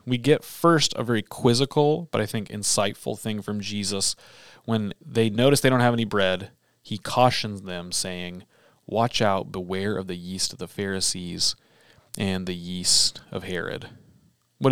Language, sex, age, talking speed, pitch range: English, male, 30-49, 165 wpm, 95-115 Hz